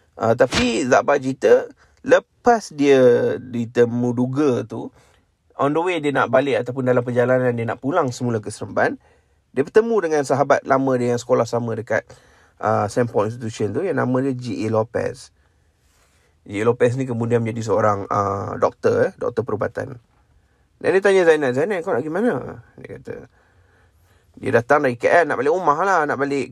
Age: 30-49